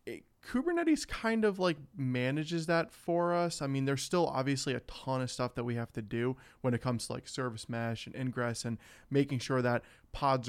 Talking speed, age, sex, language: 205 wpm, 20-39, male, English